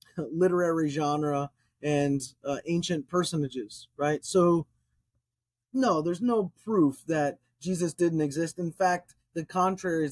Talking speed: 125 wpm